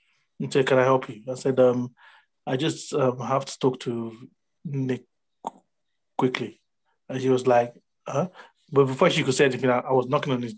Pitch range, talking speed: 130-155 Hz, 195 wpm